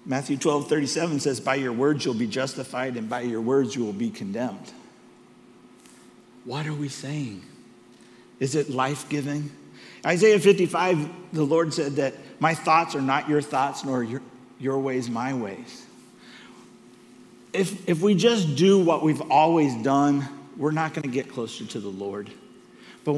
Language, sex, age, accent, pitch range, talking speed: English, male, 50-69, American, 120-150 Hz, 160 wpm